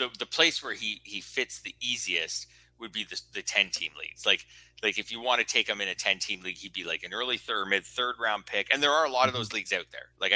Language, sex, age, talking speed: English, male, 30-49, 280 wpm